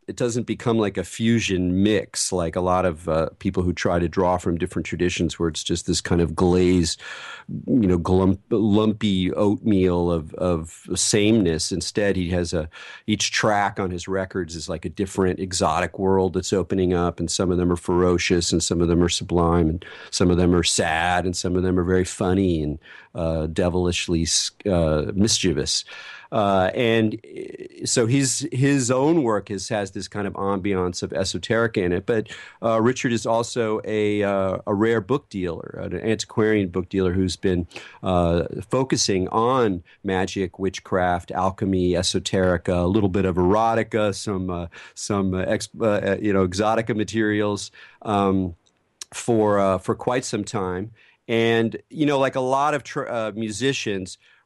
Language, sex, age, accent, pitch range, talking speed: English, male, 40-59, American, 90-110 Hz, 170 wpm